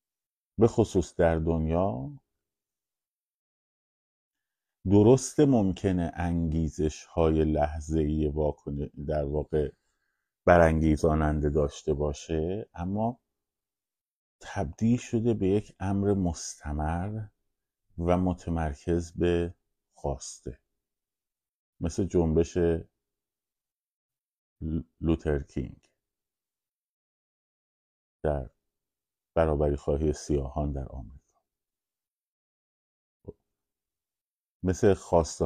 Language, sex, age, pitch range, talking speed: Persian, male, 50-69, 75-90 Hz, 60 wpm